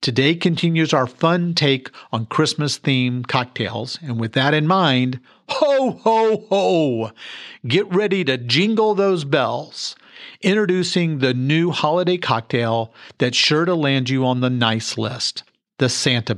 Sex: male